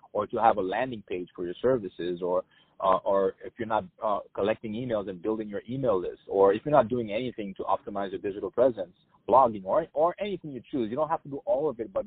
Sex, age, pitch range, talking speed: male, 30-49, 115-155 Hz, 245 wpm